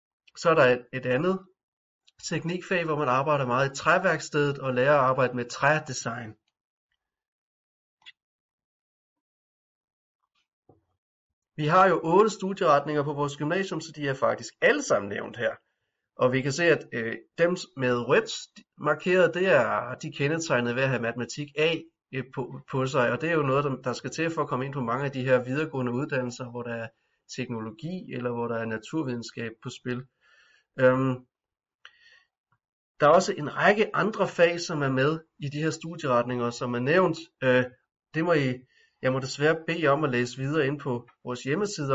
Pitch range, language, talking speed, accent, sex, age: 125-160 Hz, Danish, 175 wpm, native, male, 30-49